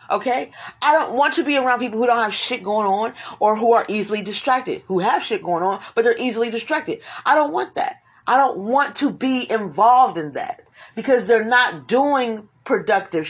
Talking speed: 205 wpm